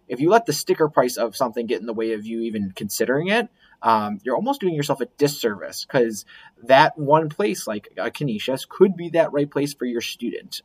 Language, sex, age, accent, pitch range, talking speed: English, male, 20-39, American, 110-150 Hz, 220 wpm